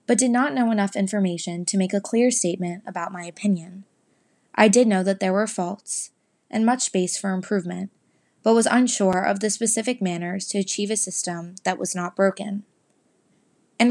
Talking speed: 180 wpm